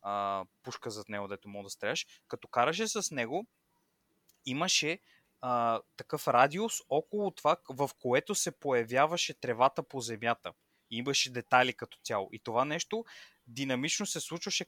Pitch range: 125-165 Hz